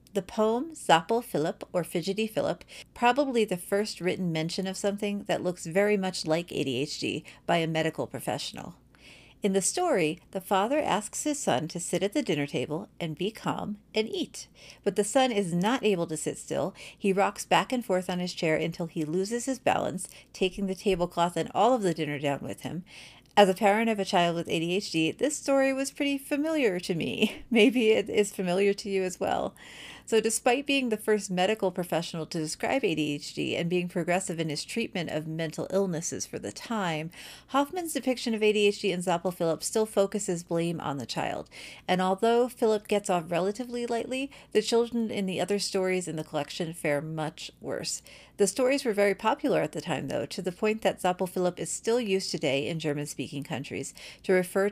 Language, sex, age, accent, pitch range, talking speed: English, female, 40-59, American, 165-215 Hz, 195 wpm